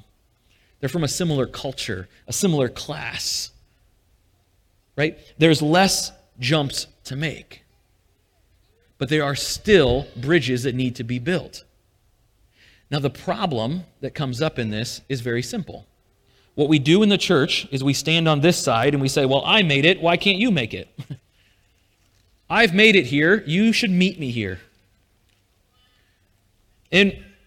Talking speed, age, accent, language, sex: 150 wpm, 30-49, American, English, male